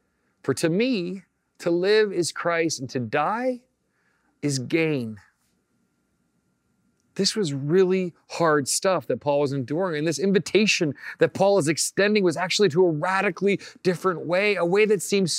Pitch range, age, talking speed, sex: 135-180 Hz, 40-59, 150 wpm, male